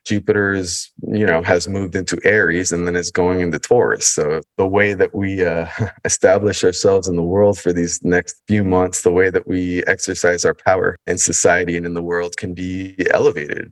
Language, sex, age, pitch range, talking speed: English, male, 20-39, 85-105 Hz, 200 wpm